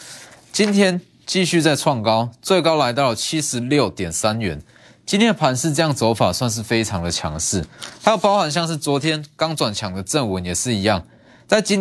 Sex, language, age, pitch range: male, Chinese, 20-39, 115-170 Hz